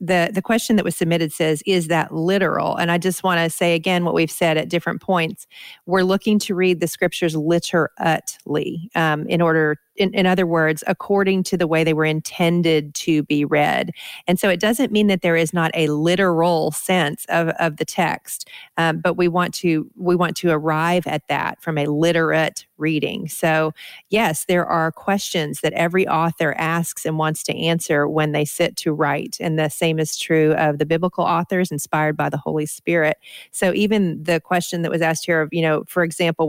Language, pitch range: English, 155-180 Hz